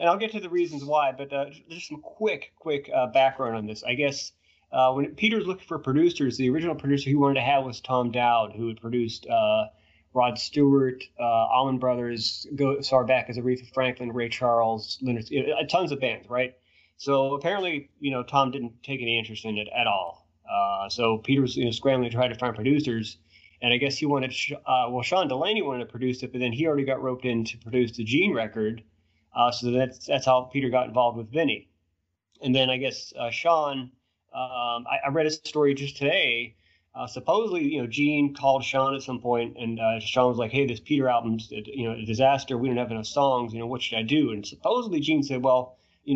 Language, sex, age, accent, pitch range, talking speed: English, male, 30-49, American, 115-140 Hz, 225 wpm